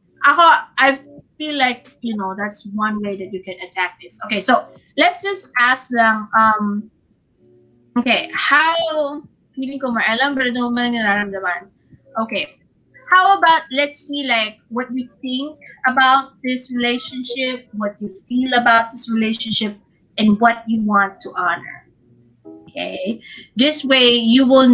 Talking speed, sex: 120 wpm, female